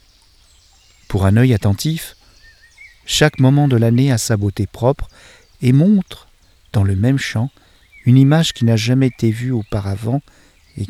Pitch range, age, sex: 90-120 Hz, 50-69, male